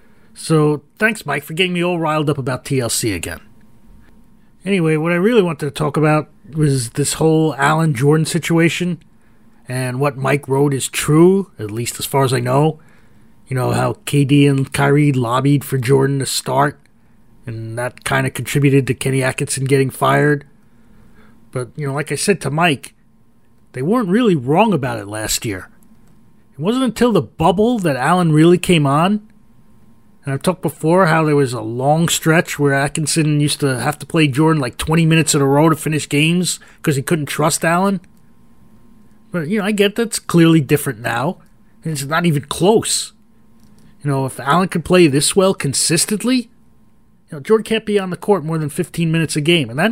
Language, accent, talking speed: English, American, 190 wpm